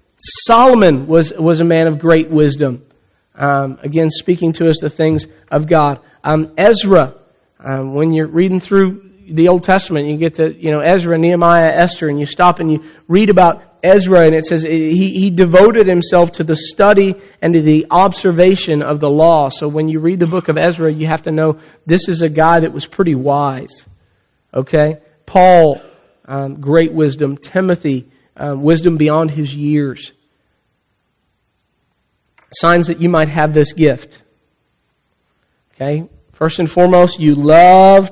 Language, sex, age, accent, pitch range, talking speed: English, male, 40-59, American, 150-180 Hz, 165 wpm